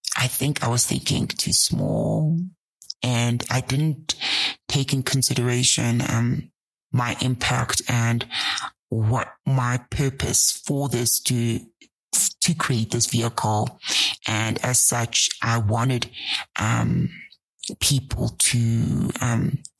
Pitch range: 115-135 Hz